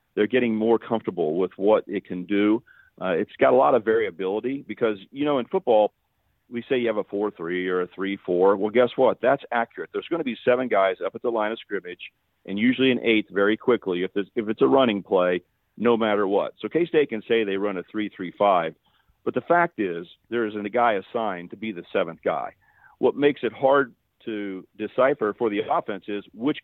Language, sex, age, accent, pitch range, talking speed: English, male, 40-59, American, 100-120 Hz, 215 wpm